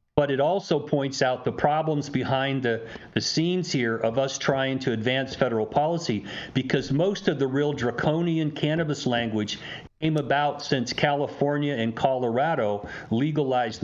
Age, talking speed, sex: 50-69, 145 wpm, male